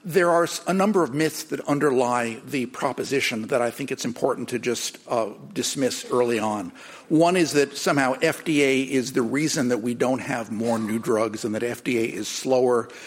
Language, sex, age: English, male, 50-69